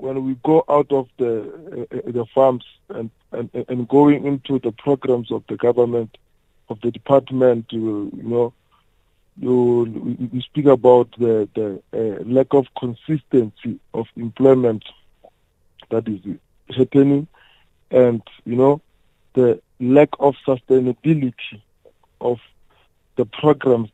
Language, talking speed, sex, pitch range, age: English, 125 wpm, male, 115-140 Hz, 50-69